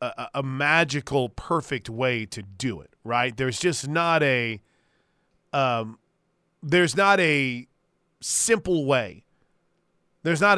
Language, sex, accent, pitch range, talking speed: English, male, American, 140-190 Hz, 115 wpm